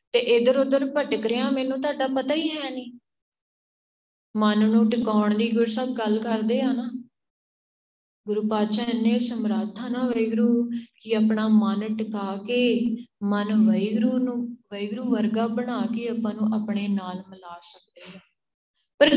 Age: 20-39